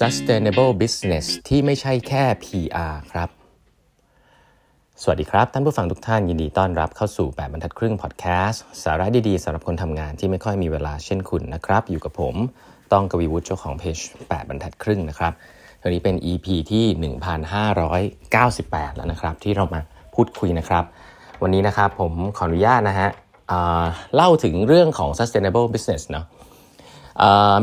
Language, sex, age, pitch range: Thai, male, 30-49, 85-110 Hz